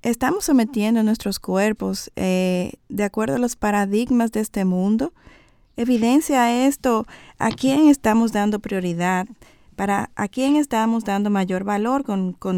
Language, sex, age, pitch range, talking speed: Spanish, female, 30-49, 200-240 Hz, 140 wpm